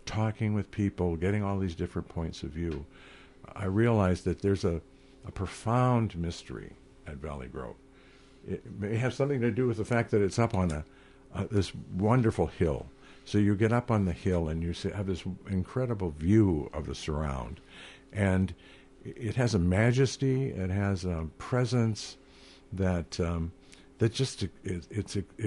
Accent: American